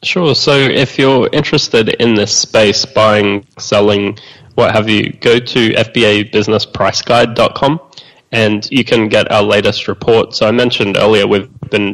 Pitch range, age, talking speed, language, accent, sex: 105-115 Hz, 20-39, 155 wpm, English, Australian, male